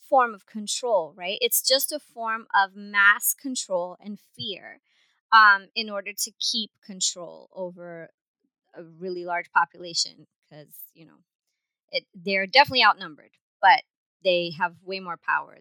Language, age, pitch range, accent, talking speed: English, 30-49, 185-230 Hz, American, 140 wpm